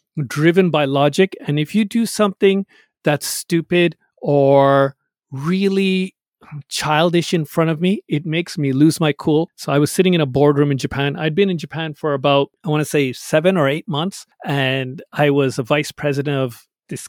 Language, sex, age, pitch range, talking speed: English, male, 40-59, 135-165 Hz, 190 wpm